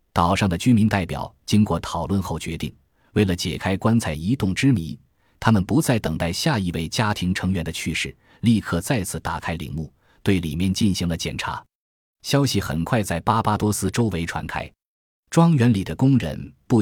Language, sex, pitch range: Chinese, male, 85-110 Hz